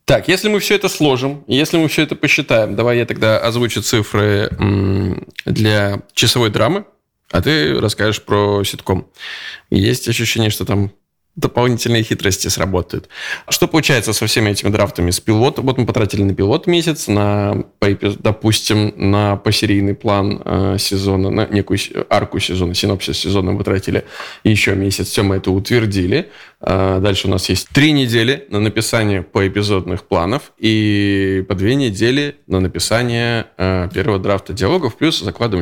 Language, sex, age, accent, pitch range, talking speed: Russian, male, 20-39, native, 95-120 Hz, 145 wpm